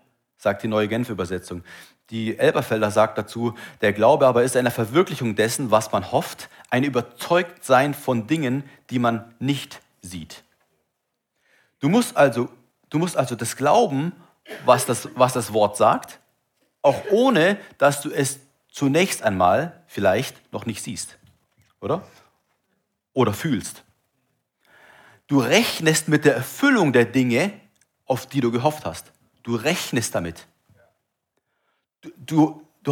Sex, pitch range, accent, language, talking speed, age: male, 120-155 Hz, German, German, 130 wpm, 40-59